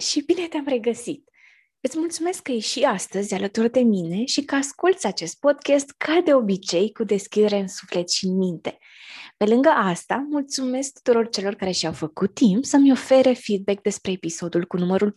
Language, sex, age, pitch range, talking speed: Romanian, female, 20-39, 195-280 Hz, 180 wpm